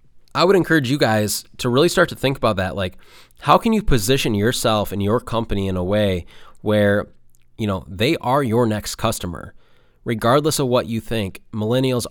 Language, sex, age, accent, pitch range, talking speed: English, male, 20-39, American, 95-120 Hz, 190 wpm